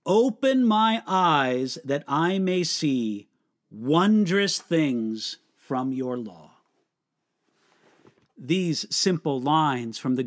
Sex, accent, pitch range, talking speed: male, American, 150-225 Hz, 100 wpm